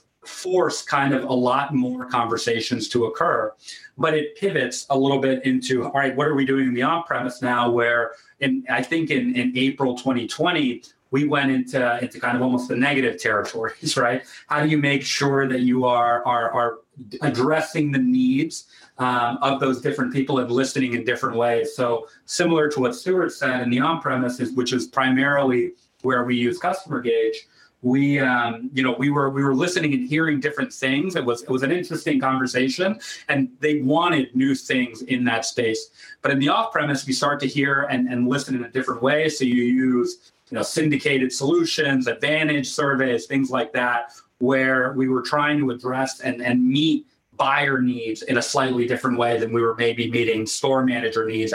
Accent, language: American, English